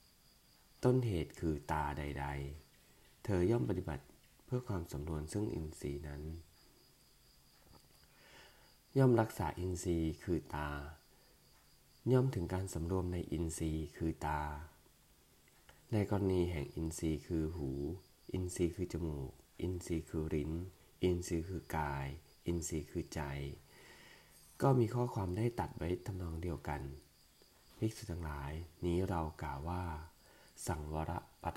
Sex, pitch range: male, 75-95 Hz